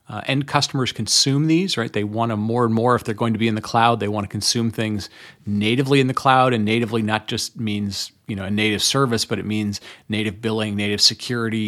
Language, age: English, 30-49